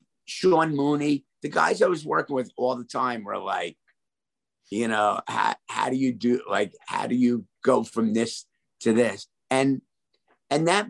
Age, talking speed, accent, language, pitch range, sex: 50-69, 175 wpm, American, English, 120-145 Hz, male